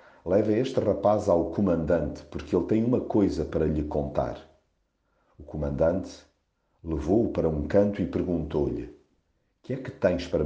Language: Portuguese